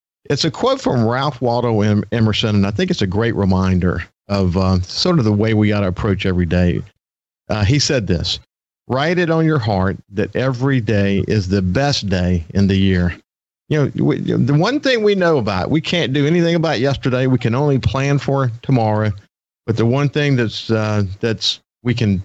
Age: 50-69